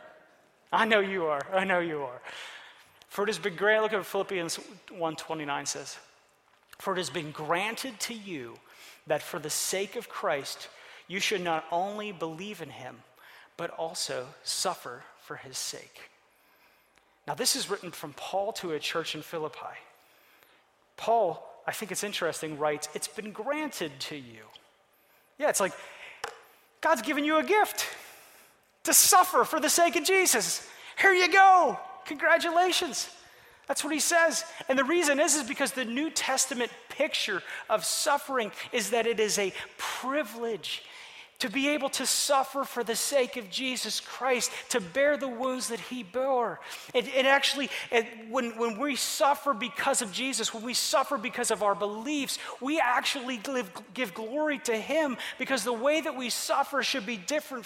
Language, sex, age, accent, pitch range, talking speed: English, male, 30-49, American, 205-280 Hz, 165 wpm